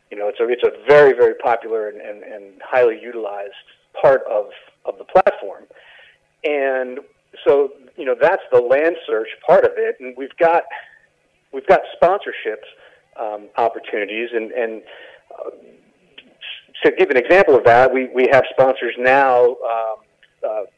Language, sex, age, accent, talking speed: English, male, 40-59, American, 155 wpm